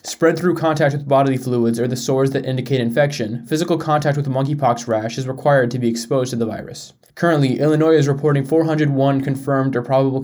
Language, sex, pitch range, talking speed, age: English, male, 125-150 Hz, 195 wpm, 20-39